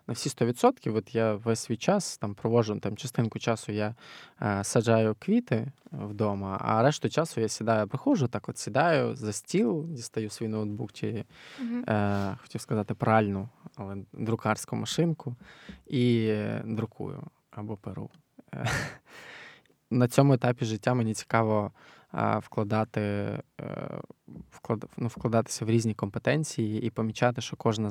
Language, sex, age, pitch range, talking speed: Ukrainian, male, 20-39, 105-125 Hz, 140 wpm